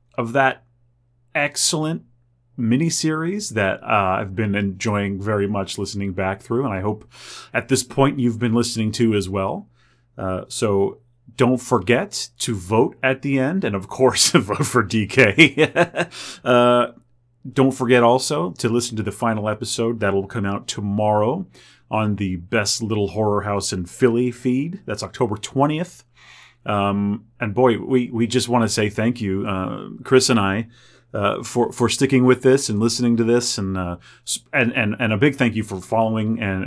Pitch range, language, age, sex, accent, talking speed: 100-125 Hz, English, 30-49, male, American, 175 wpm